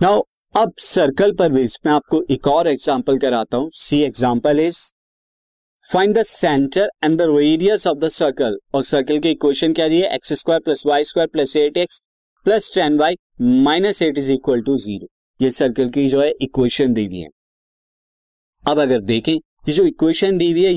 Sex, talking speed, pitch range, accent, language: male, 150 wpm, 140-170 Hz, native, Hindi